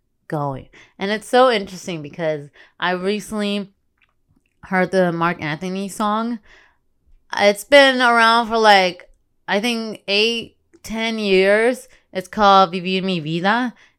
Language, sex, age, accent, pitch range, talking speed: English, female, 20-39, American, 170-205 Hz, 120 wpm